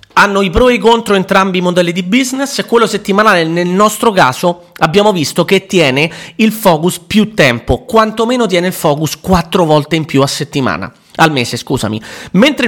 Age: 30-49